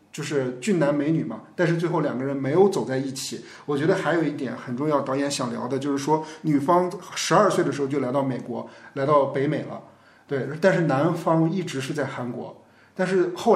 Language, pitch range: Chinese, 130-160 Hz